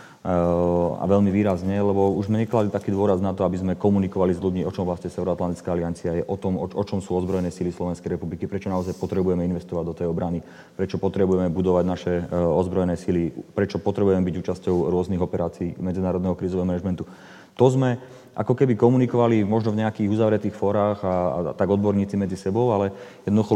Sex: male